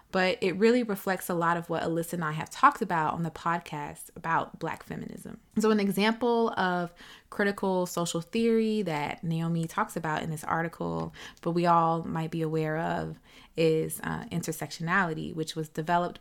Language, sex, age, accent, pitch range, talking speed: English, female, 20-39, American, 155-195 Hz, 175 wpm